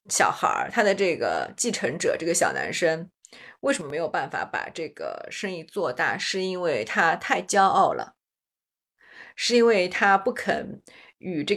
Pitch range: 175-235 Hz